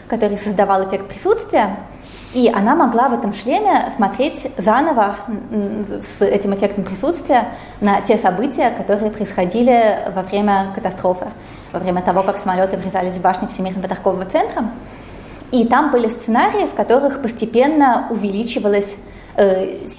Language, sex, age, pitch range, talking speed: Russian, female, 20-39, 190-230 Hz, 130 wpm